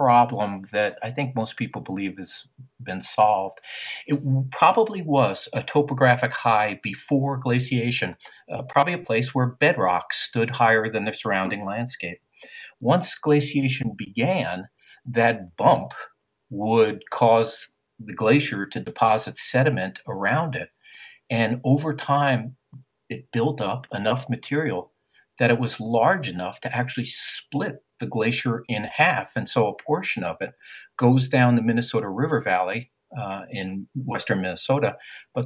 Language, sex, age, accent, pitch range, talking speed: English, male, 50-69, American, 105-135 Hz, 135 wpm